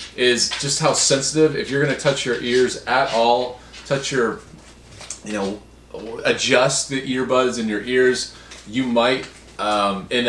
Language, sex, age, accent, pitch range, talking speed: English, male, 30-49, American, 105-135 Hz, 150 wpm